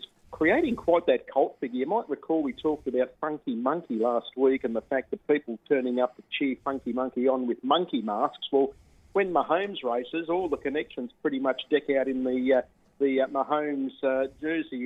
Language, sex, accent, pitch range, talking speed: English, male, Australian, 125-150 Hz, 200 wpm